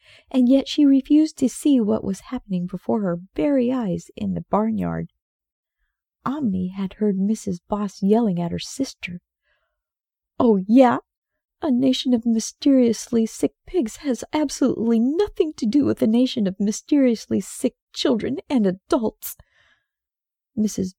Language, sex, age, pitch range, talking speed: English, female, 40-59, 190-245 Hz, 135 wpm